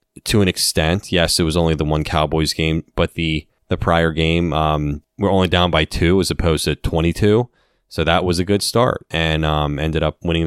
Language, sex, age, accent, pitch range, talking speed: English, male, 30-49, American, 80-100 Hz, 210 wpm